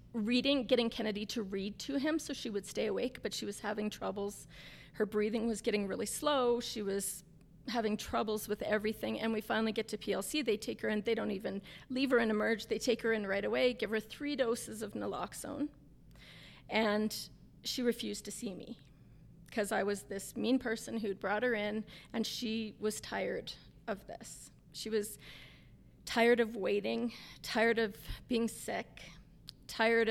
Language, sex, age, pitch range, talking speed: English, female, 30-49, 205-230 Hz, 180 wpm